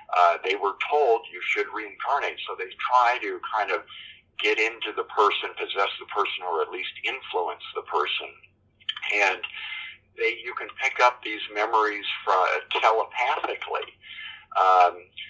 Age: 50-69